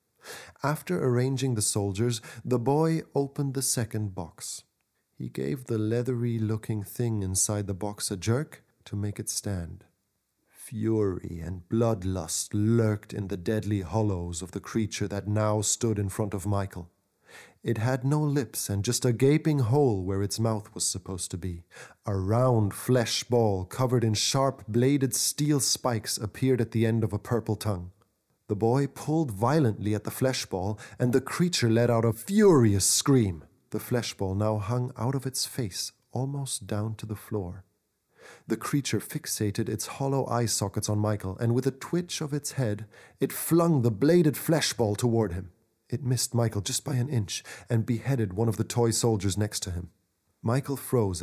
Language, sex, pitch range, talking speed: English, male, 105-130 Hz, 170 wpm